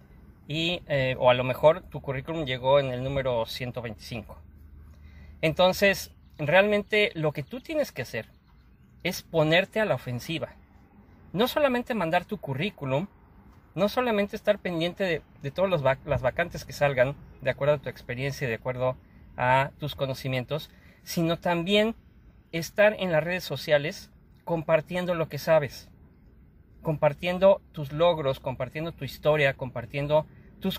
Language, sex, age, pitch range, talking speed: Spanish, male, 40-59, 125-170 Hz, 140 wpm